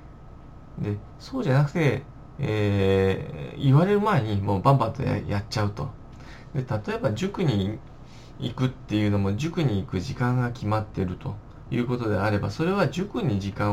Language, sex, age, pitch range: Japanese, male, 20-39, 105-145 Hz